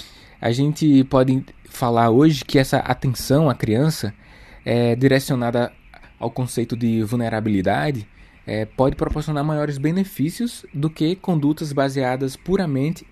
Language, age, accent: Portuguese, 20-39, Brazilian